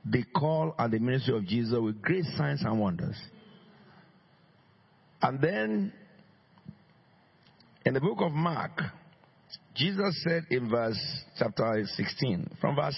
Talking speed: 125 wpm